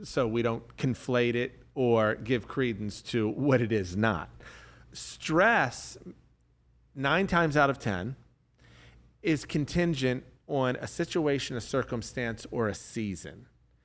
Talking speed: 125 wpm